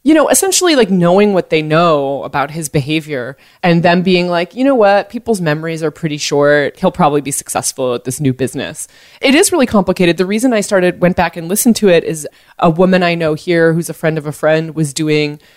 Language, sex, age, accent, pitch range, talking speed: English, female, 20-39, American, 145-175 Hz, 225 wpm